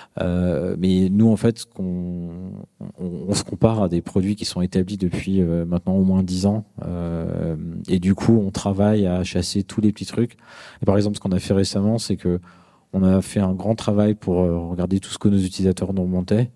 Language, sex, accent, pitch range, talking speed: French, male, French, 90-105 Hz, 215 wpm